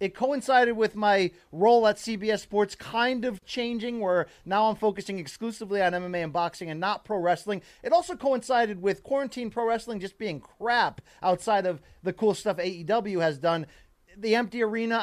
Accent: American